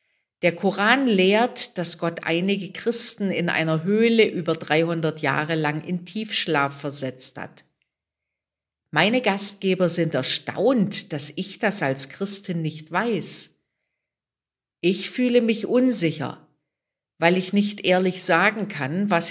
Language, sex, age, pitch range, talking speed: German, female, 50-69, 160-215 Hz, 125 wpm